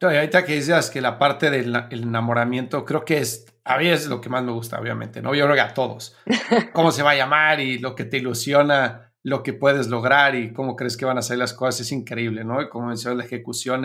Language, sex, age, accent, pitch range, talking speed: Spanish, male, 40-59, Mexican, 120-145 Hz, 255 wpm